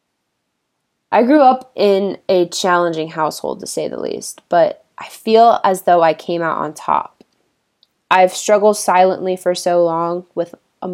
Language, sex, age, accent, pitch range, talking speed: English, female, 20-39, American, 165-190 Hz, 160 wpm